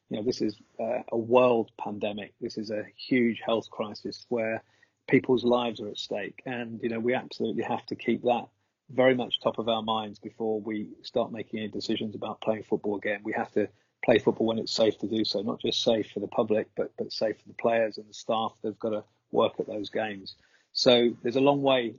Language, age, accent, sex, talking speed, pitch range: English, 30-49, British, male, 225 wpm, 110-120 Hz